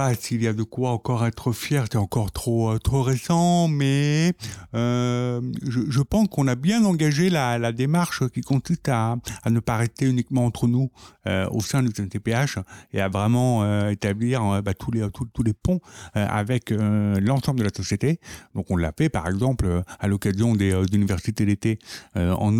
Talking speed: 195 wpm